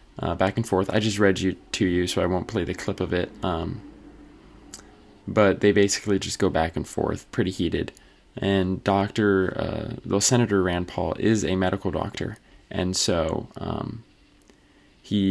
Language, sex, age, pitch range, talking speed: English, male, 20-39, 95-115 Hz, 165 wpm